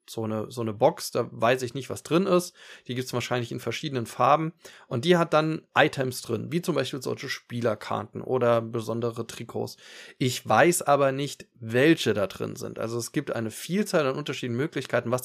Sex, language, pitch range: male, German, 115-155 Hz